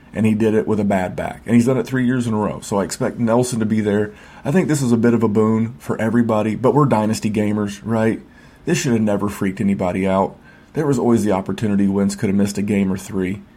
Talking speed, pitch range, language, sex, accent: 265 wpm, 105-135 Hz, English, male, American